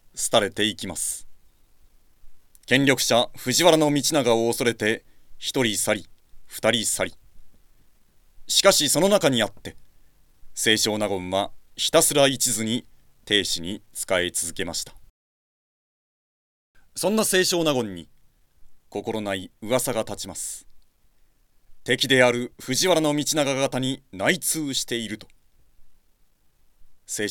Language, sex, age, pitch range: Japanese, male, 40-59, 100-145 Hz